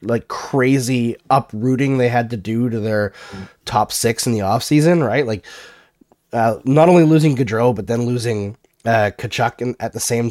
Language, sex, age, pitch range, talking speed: English, male, 20-39, 115-150 Hz, 170 wpm